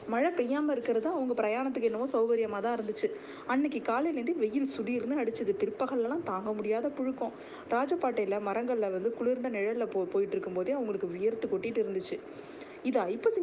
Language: Tamil